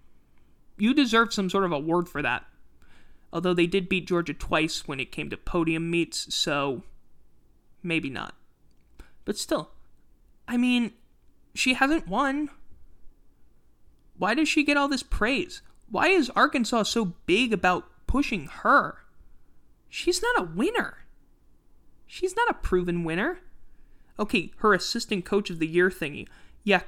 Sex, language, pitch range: male, English, 160-210 Hz